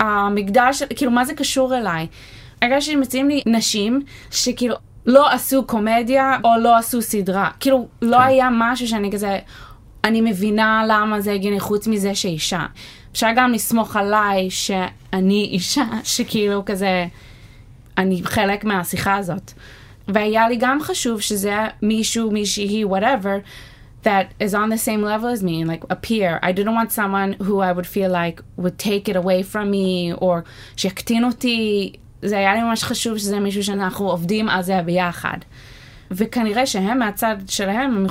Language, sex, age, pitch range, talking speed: Hebrew, female, 20-39, 190-240 Hz, 160 wpm